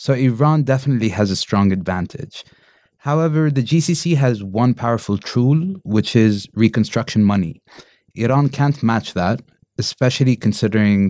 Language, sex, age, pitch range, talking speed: English, male, 30-49, 105-130 Hz, 130 wpm